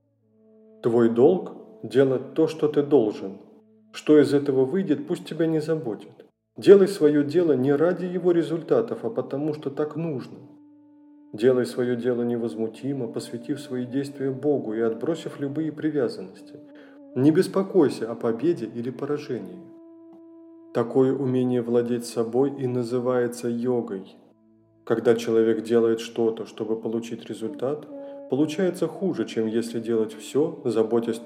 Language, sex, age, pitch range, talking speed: Russian, male, 20-39, 115-175 Hz, 125 wpm